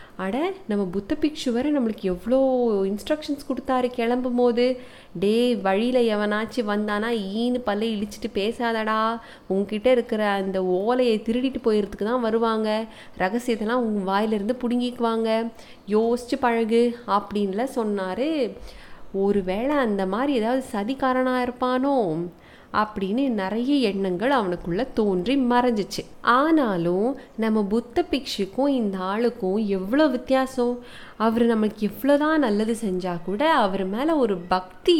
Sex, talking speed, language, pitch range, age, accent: female, 110 wpm, Tamil, 200-255 Hz, 30-49, native